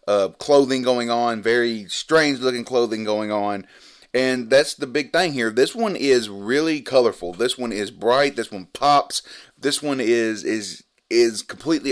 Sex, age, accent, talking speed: male, 30-49, American, 170 wpm